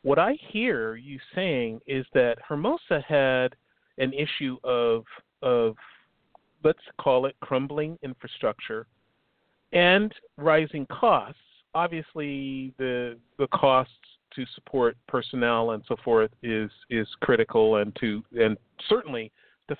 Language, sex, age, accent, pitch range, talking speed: English, male, 40-59, American, 115-155 Hz, 120 wpm